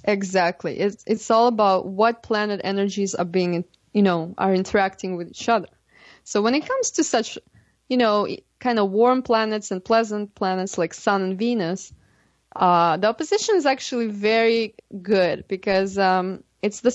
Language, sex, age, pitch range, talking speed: English, female, 20-39, 190-235 Hz, 165 wpm